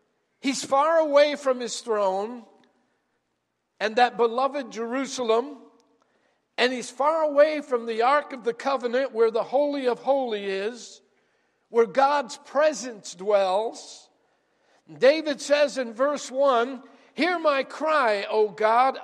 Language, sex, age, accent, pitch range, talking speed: English, male, 50-69, American, 205-270 Hz, 125 wpm